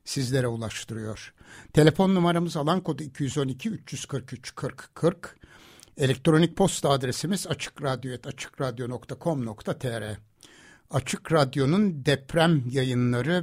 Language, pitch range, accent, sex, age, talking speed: Turkish, 125-160 Hz, native, male, 60-79, 65 wpm